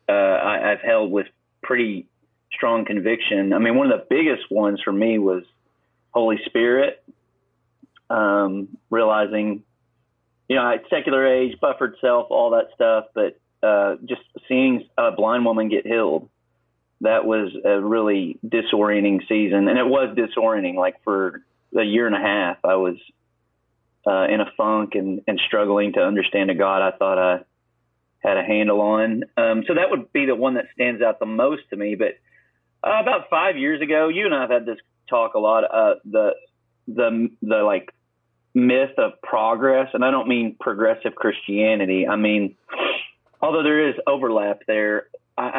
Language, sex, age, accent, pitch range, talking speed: English, male, 30-49, American, 105-135 Hz, 165 wpm